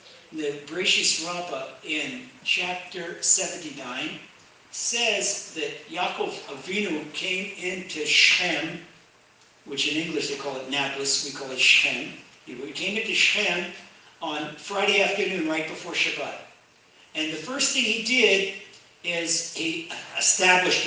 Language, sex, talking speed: English, male, 125 wpm